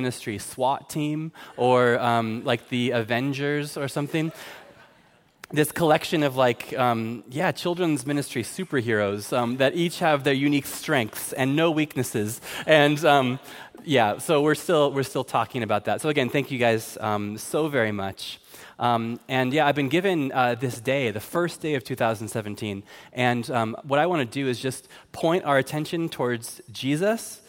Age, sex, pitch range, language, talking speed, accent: 20-39, male, 115-145 Hz, English, 170 wpm, American